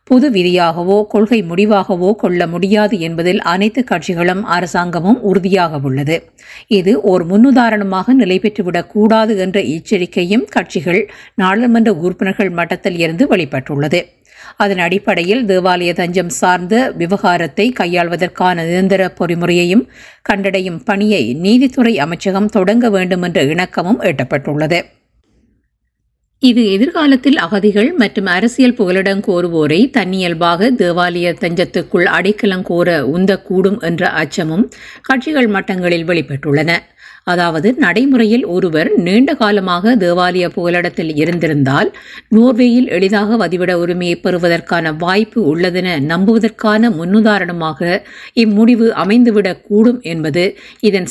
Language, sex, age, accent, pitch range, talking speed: Tamil, female, 50-69, native, 175-220 Hz, 95 wpm